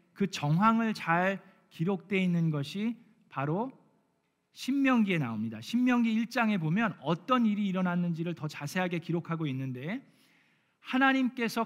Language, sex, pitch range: Korean, male, 155-200 Hz